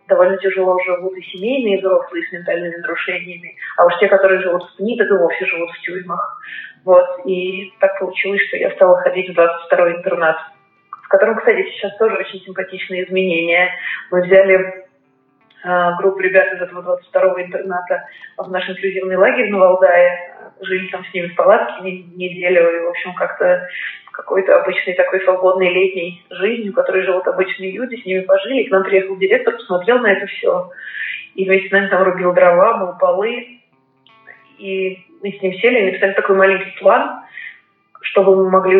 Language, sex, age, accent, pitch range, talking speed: Russian, female, 20-39, native, 180-195 Hz, 175 wpm